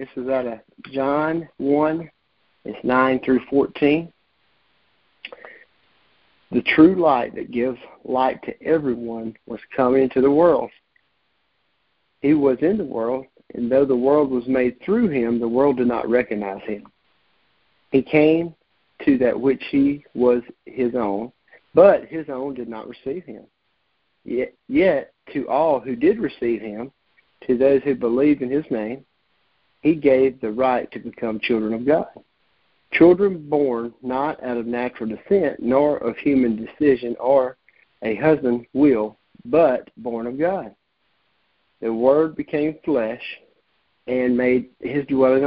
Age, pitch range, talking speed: 50-69, 120-145 Hz, 145 wpm